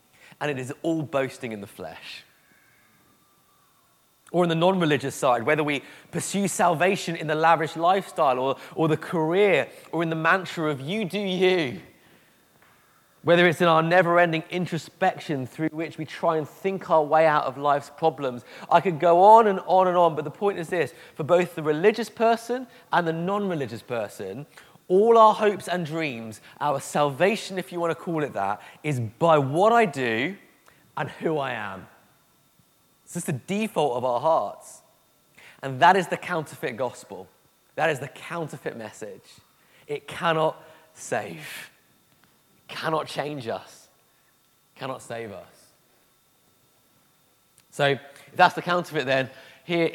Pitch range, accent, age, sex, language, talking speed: 145-180 Hz, British, 30-49, male, English, 155 wpm